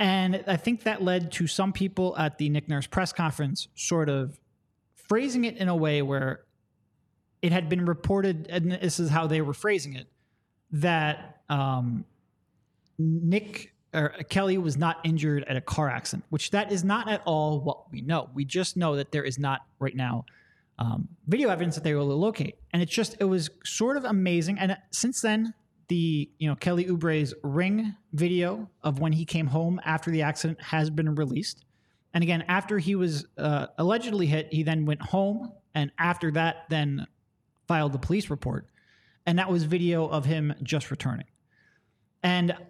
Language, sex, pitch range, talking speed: English, male, 150-190 Hz, 180 wpm